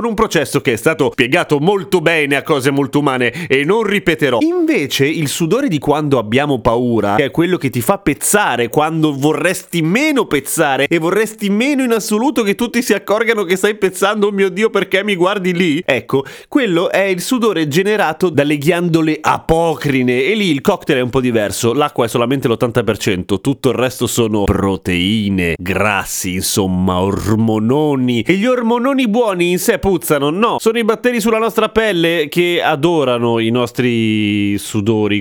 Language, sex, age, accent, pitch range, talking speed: Italian, male, 30-49, native, 125-185 Hz, 170 wpm